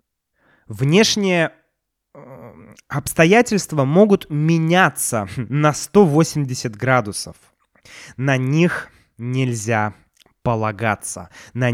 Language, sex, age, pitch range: Russian, male, 20-39, 115-155 Hz